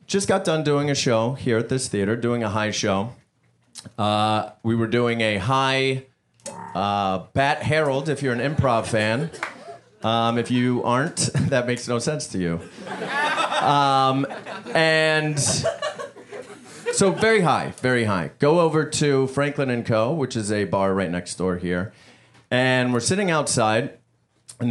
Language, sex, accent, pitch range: English, male, American, 110-150 Hz